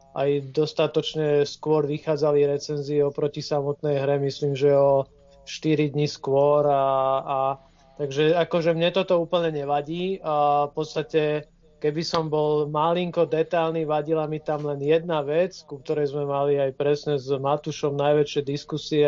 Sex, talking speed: male, 145 wpm